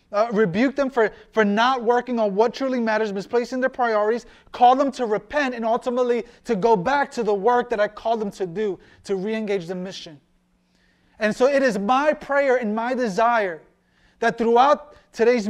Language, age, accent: English, 30-49, American